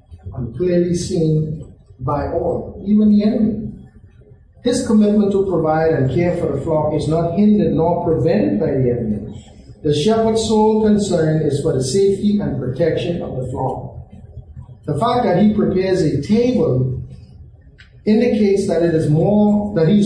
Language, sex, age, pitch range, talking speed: English, male, 50-69, 135-200 Hz, 150 wpm